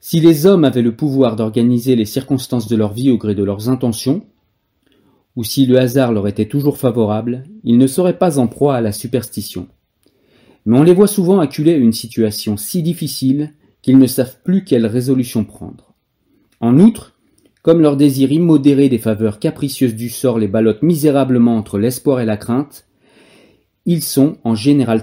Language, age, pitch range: French, 40-59, 115-150 Hz